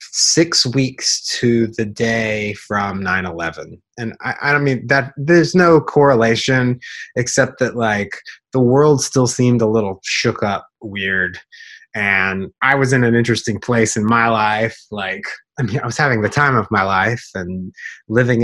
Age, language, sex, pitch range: 30-49, English, male, 105-130 Hz